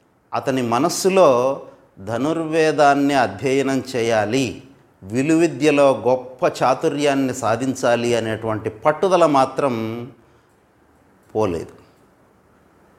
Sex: male